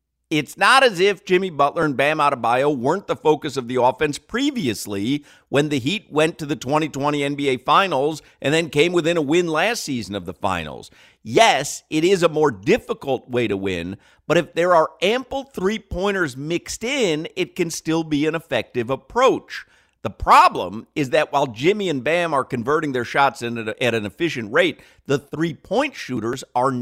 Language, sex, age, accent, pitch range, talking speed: English, male, 50-69, American, 115-165 Hz, 180 wpm